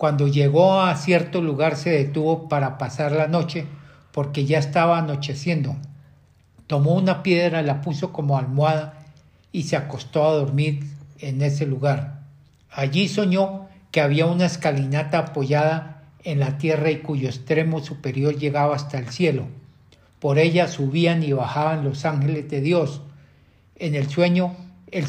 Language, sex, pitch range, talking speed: Spanish, male, 140-165 Hz, 145 wpm